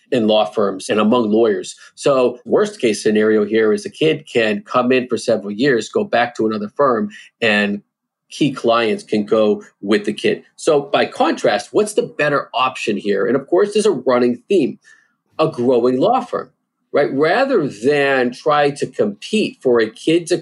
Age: 40-59